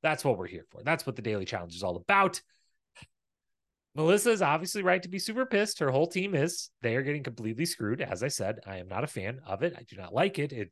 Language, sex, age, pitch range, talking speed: English, male, 30-49, 110-150 Hz, 260 wpm